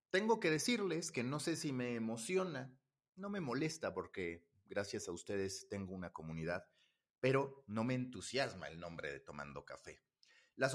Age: 40-59